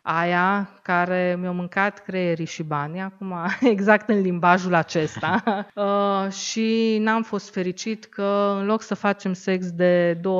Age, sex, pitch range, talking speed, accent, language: 20-39, female, 170-210 Hz, 145 wpm, native, Romanian